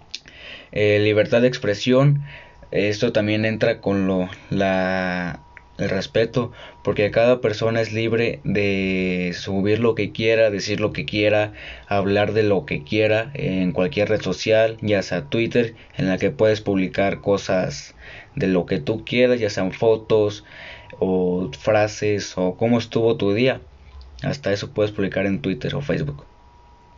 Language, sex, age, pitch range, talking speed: Spanish, male, 20-39, 95-115 Hz, 150 wpm